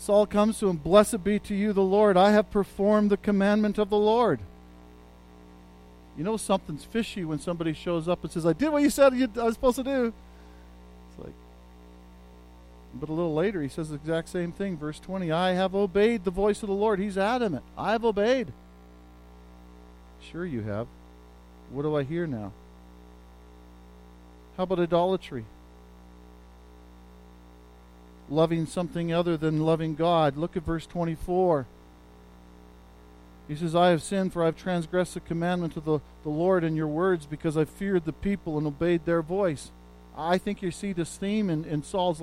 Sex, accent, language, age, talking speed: male, American, English, 50-69, 170 wpm